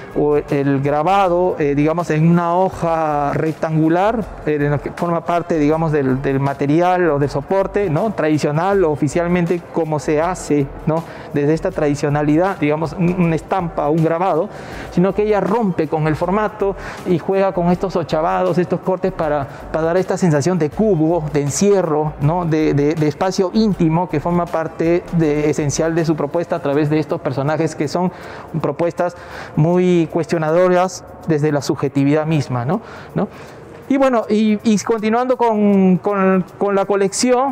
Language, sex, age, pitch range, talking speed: Spanish, male, 40-59, 155-195 Hz, 165 wpm